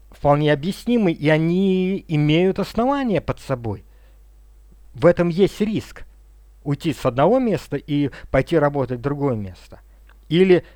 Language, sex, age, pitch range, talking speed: Russian, male, 50-69, 125-170 Hz, 130 wpm